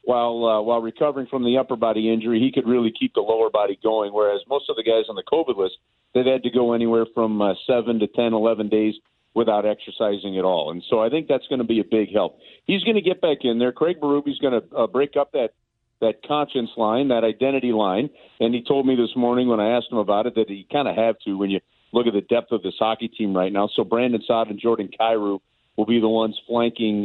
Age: 50-69